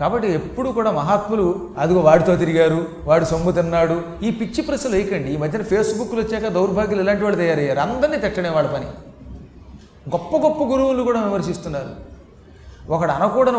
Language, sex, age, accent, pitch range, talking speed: Telugu, male, 30-49, native, 170-230 Hz, 145 wpm